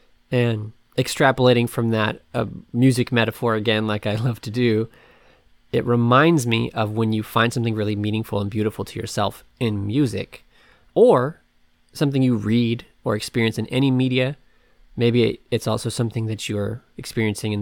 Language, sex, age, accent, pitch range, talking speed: English, male, 20-39, American, 110-130 Hz, 155 wpm